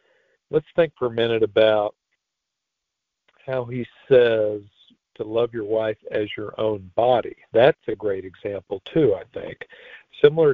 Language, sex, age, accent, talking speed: English, male, 50-69, American, 140 wpm